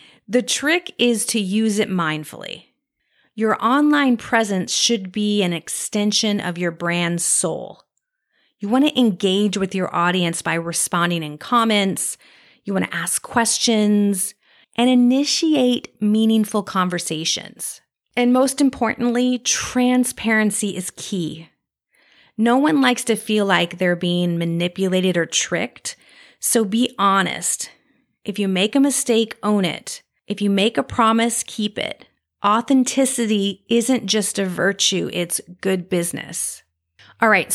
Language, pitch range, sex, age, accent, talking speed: English, 175-230 Hz, female, 30-49, American, 130 wpm